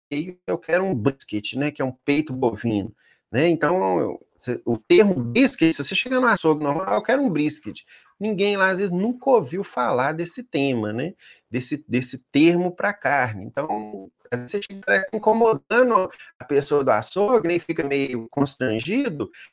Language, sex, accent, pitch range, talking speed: Portuguese, male, Brazilian, 135-200 Hz, 175 wpm